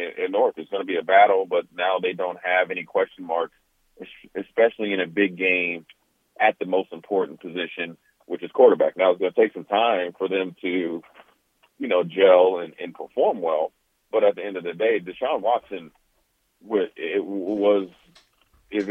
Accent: American